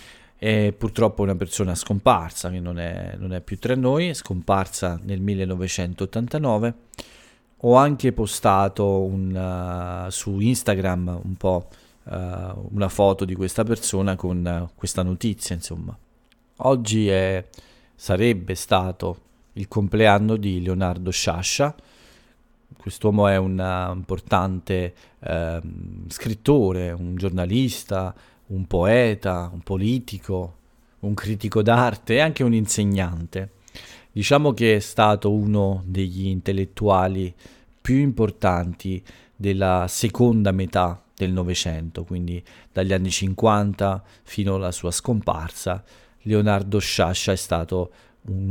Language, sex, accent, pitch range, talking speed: Italian, male, native, 90-110 Hz, 115 wpm